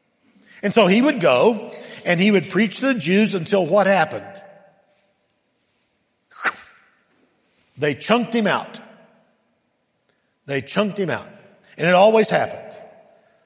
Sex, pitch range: male, 165-220 Hz